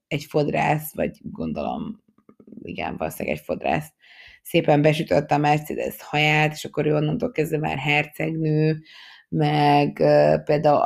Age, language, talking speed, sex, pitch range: 20-39, Hungarian, 125 wpm, female, 145-165 Hz